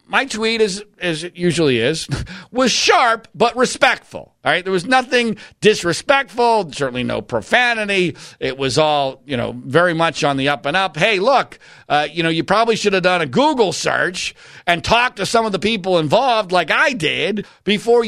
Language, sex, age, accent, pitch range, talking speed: English, male, 50-69, American, 170-240 Hz, 190 wpm